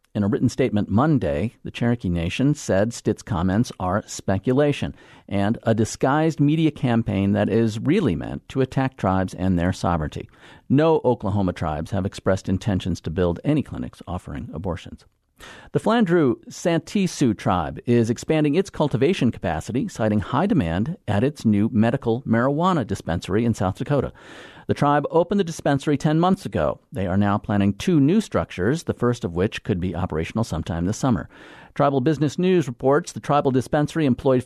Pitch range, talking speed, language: 100-145 Hz, 165 wpm, English